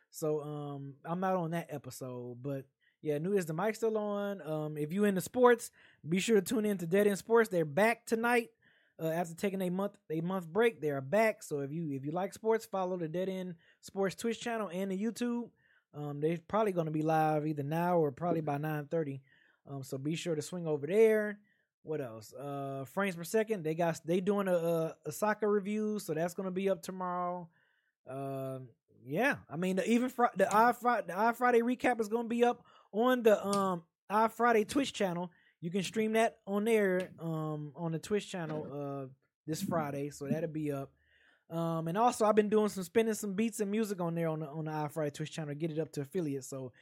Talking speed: 225 wpm